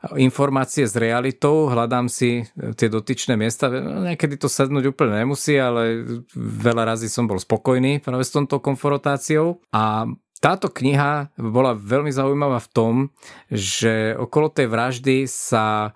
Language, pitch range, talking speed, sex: Slovak, 110-135 Hz, 130 wpm, male